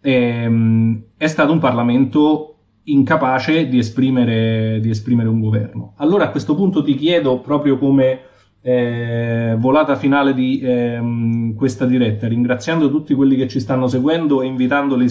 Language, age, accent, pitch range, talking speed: Italian, 30-49, native, 115-140 Hz, 135 wpm